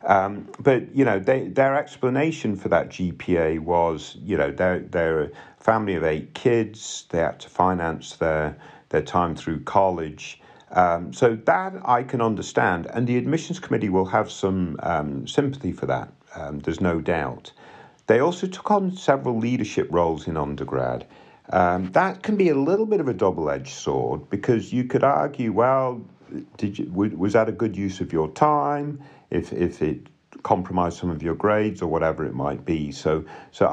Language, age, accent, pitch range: English, 50-69, British, 85-130 Hz